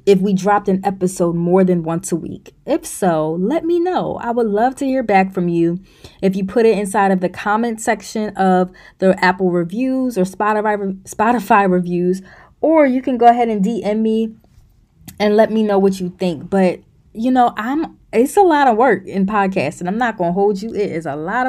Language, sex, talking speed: English, female, 210 wpm